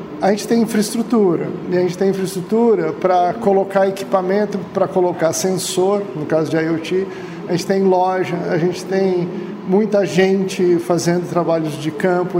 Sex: male